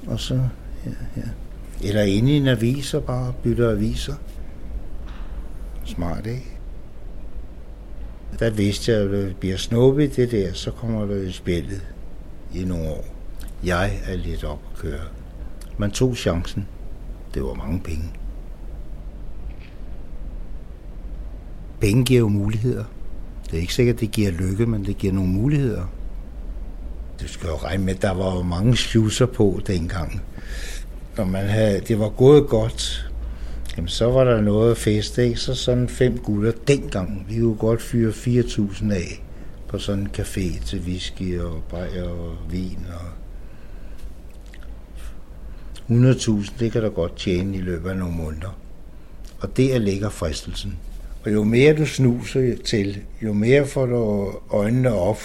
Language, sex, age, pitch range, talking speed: Danish, male, 60-79, 85-115 Hz, 145 wpm